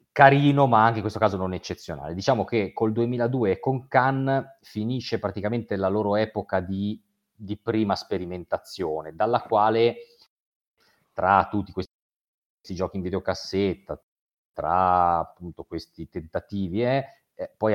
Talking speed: 125 wpm